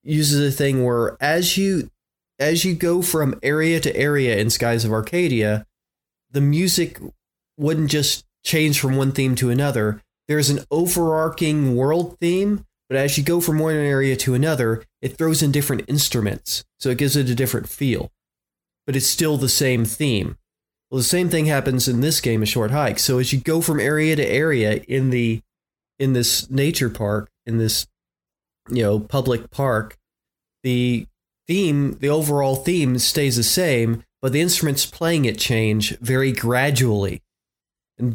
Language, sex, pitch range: English, male, 120-150 Hz